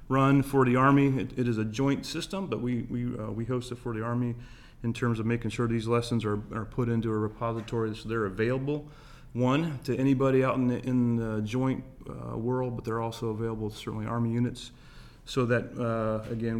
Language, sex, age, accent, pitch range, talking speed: English, male, 30-49, American, 110-125 Hz, 215 wpm